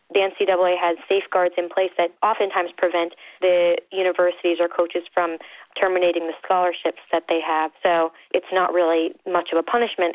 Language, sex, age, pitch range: English, female, 20-39, 165-180 Hz